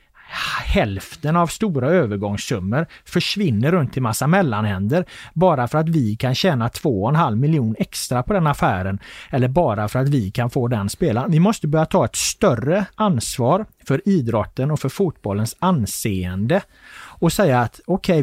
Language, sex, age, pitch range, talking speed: Swedish, male, 30-49, 115-175 Hz, 160 wpm